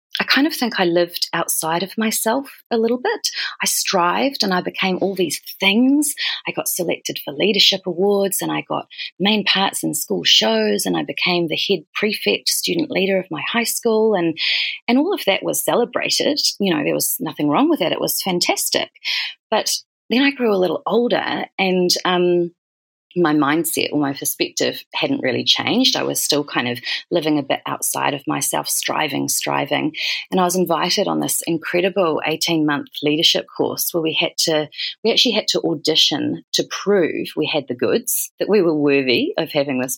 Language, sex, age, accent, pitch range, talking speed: English, female, 30-49, Australian, 155-225 Hz, 190 wpm